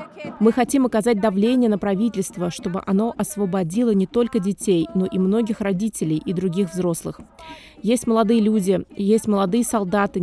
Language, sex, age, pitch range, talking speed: Russian, female, 20-39, 190-225 Hz, 145 wpm